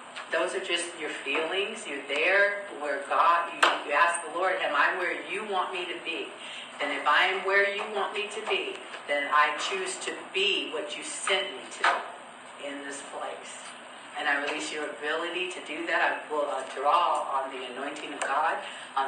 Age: 50-69